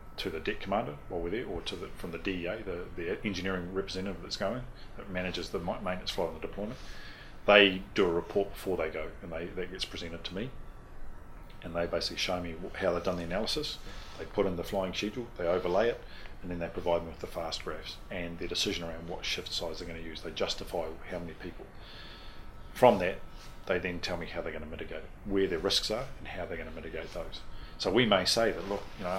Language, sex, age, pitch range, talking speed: English, male, 40-59, 85-95 Hz, 240 wpm